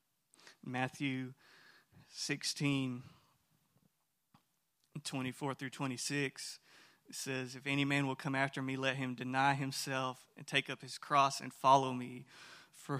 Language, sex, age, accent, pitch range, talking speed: English, male, 30-49, American, 130-145 Hz, 125 wpm